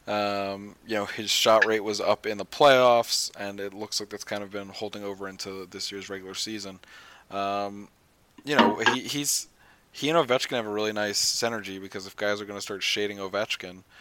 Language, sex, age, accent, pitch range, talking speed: English, male, 20-39, American, 95-105 Hz, 205 wpm